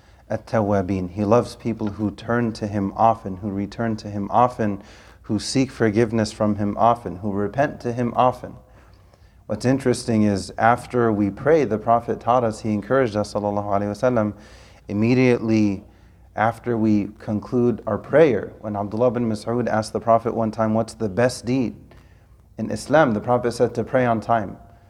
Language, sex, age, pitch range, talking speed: English, male, 30-49, 105-125 Hz, 165 wpm